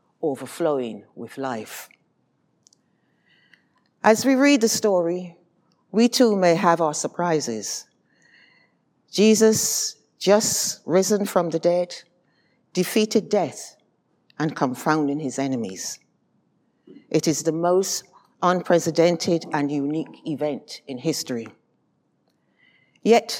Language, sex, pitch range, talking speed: English, female, 150-190 Hz, 95 wpm